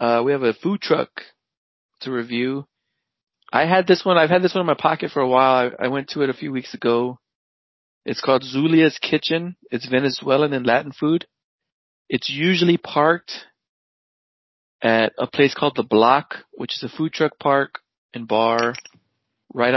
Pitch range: 115-150 Hz